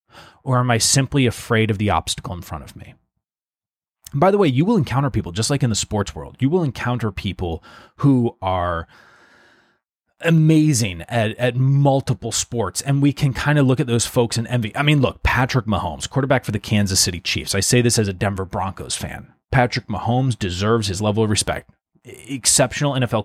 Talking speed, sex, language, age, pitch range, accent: 195 wpm, male, English, 30-49, 100-140 Hz, American